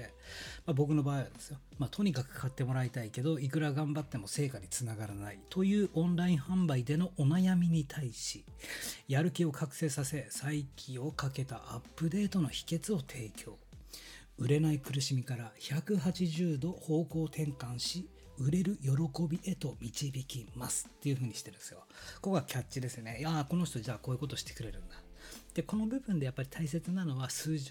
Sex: male